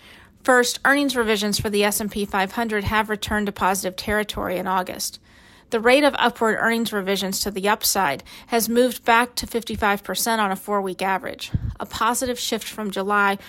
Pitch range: 195-235 Hz